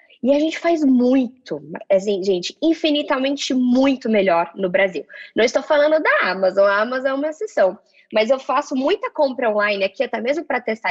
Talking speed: 180 wpm